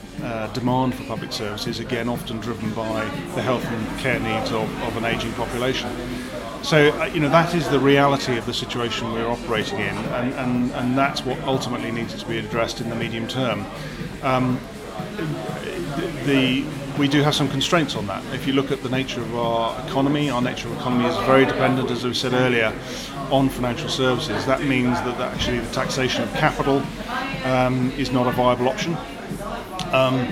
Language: English